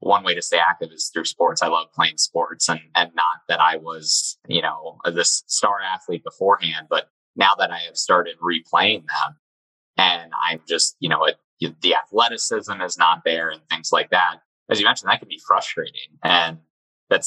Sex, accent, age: male, American, 20-39